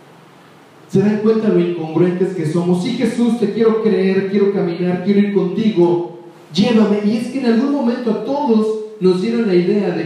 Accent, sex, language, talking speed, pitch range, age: Mexican, male, Spanish, 185 wpm, 160-215 Hz, 40-59